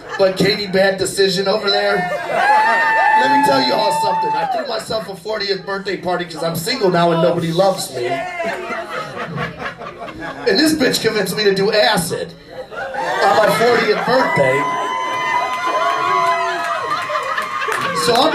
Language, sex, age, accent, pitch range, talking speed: English, male, 30-49, American, 180-260 Hz, 130 wpm